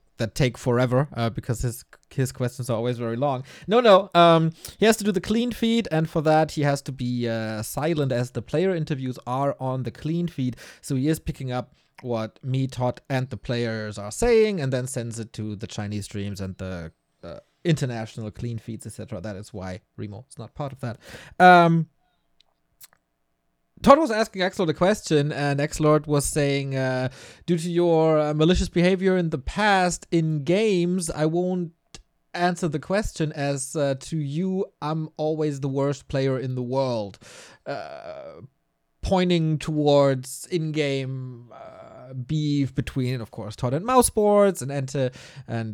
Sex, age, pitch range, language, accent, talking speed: male, 30-49, 120-170 Hz, English, German, 175 wpm